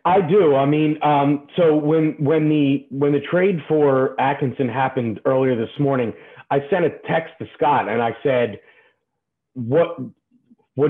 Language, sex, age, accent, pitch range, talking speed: English, male, 40-59, American, 130-155 Hz, 160 wpm